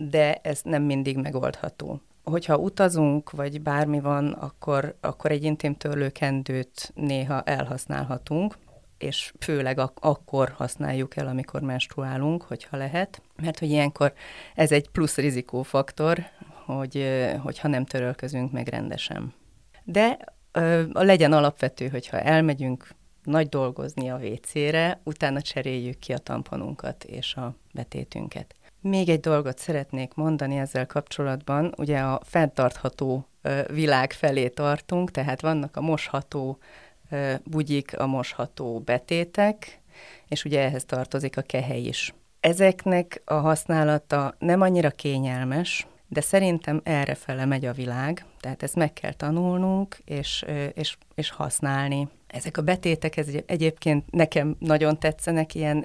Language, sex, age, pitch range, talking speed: Hungarian, female, 30-49, 135-155 Hz, 120 wpm